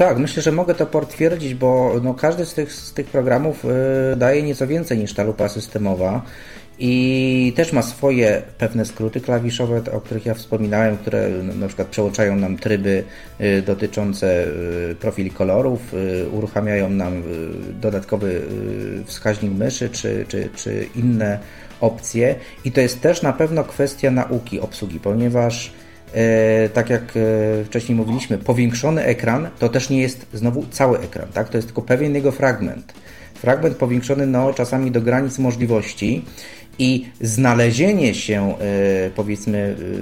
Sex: male